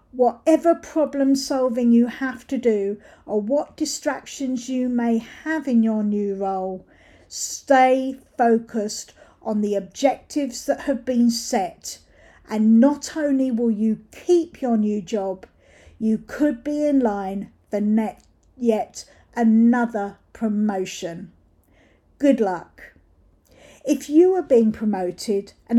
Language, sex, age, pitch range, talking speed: English, female, 50-69, 205-270 Hz, 120 wpm